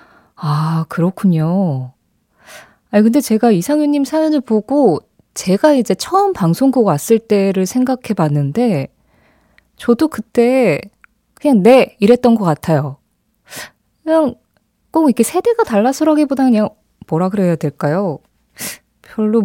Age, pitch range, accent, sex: 20-39, 170-255 Hz, native, female